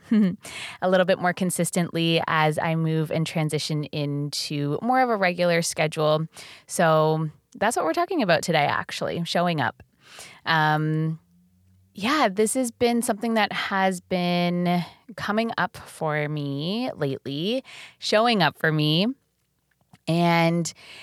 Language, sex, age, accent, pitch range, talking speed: English, female, 20-39, American, 155-205 Hz, 130 wpm